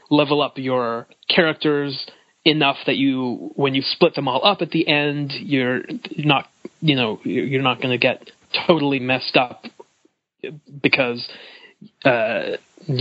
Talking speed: 140 wpm